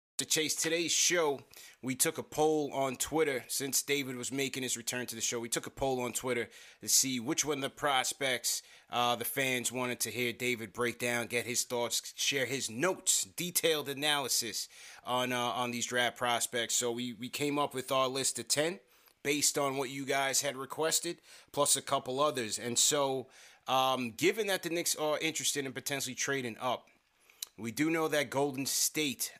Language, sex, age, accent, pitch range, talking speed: English, male, 20-39, American, 120-145 Hz, 190 wpm